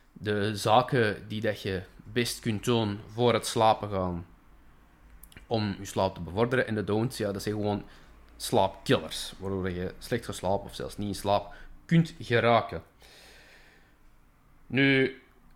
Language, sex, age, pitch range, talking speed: Dutch, male, 20-39, 95-120 Hz, 145 wpm